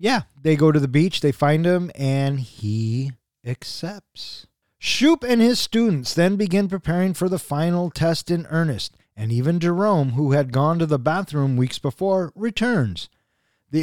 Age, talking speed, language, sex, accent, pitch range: 30-49, 165 wpm, English, male, American, 130-170 Hz